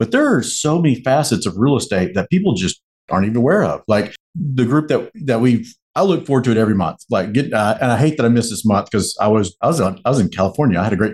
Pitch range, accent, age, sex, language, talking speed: 100-130 Hz, American, 50-69, male, English, 285 wpm